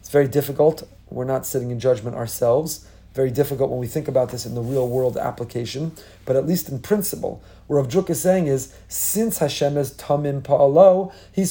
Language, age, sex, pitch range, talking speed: English, 40-59, male, 130-165 Hz, 190 wpm